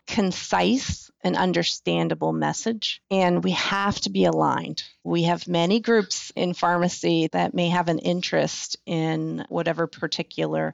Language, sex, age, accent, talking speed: English, female, 30-49, American, 135 wpm